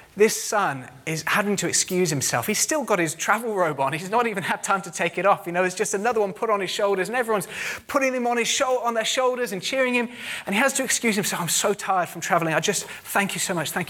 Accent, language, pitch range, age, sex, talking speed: British, English, 145-200 Hz, 30-49, male, 270 wpm